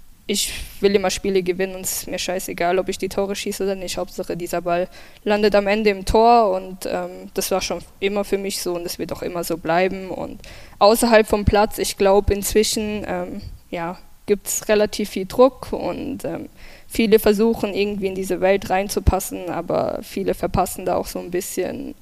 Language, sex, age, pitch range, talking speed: German, female, 10-29, 185-210 Hz, 200 wpm